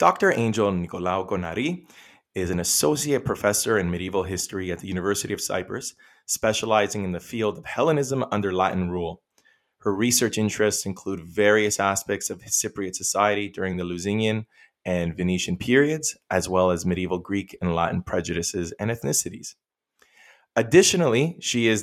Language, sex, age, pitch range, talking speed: English, male, 20-39, 90-110 Hz, 145 wpm